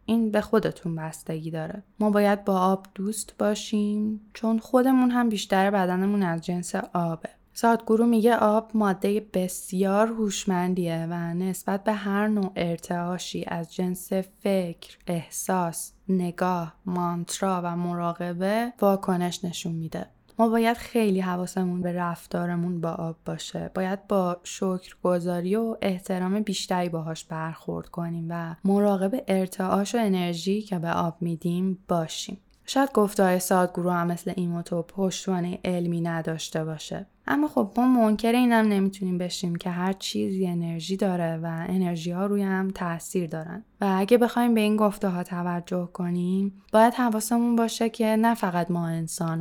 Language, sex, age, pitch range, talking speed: Persian, female, 10-29, 175-205 Hz, 140 wpm